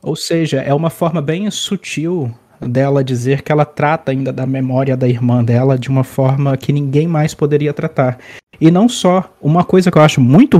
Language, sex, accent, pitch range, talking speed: Portuguese, male, Brazilian, 135-160 Hz, 200 wpm